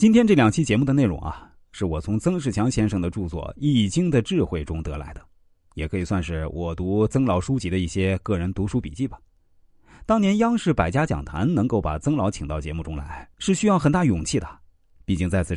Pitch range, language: 80-120 Hz, Chinese